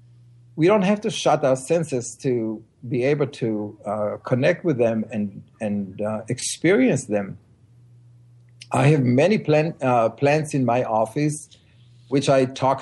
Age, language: 50-69, English